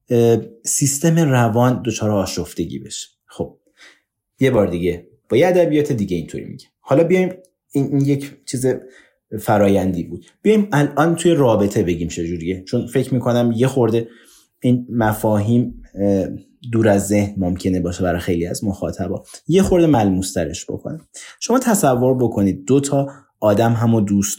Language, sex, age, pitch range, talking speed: Persian, male, 30-49, 100-155 Hz, 140 wpm